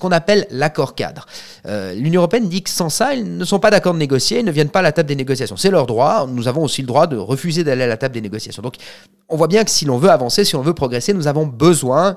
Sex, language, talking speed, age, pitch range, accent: male, French, 285 wpm, 30-49, 125-180 Hz, French